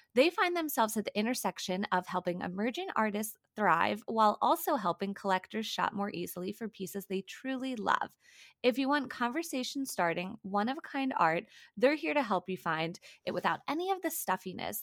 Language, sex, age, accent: English, female, 20-39, American